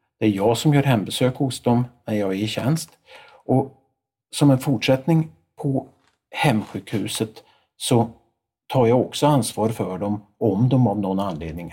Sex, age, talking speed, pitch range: male, 50-69, 160 wpm, 100-135 Hz